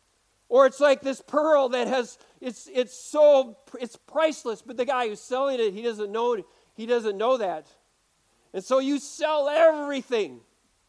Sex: male